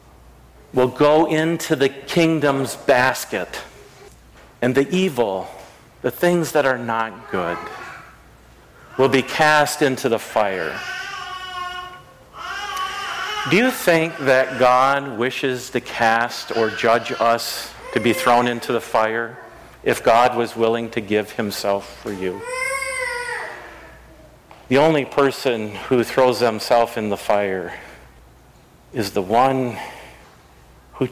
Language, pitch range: English, 115-145 Hz